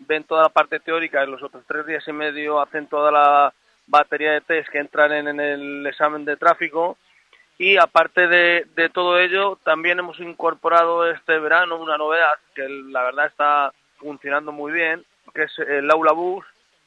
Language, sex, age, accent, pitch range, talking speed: Spanish, male, 30-49, Spanish, 150-175 Hz, 180 wpm